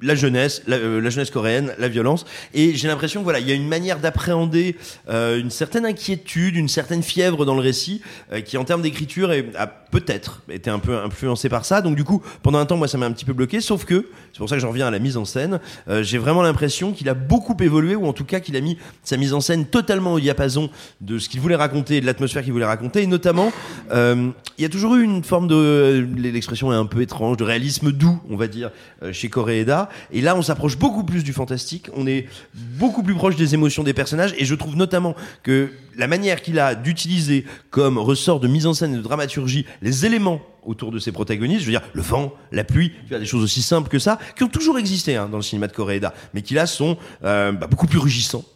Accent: French